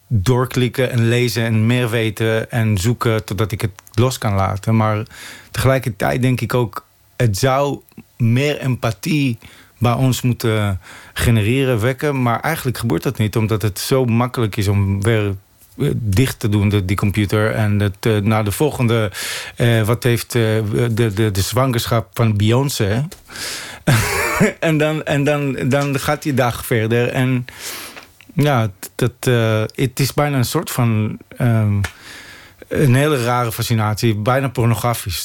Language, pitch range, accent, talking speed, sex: Dutch, 110-130 Hz, Dutch, 145 wpm, male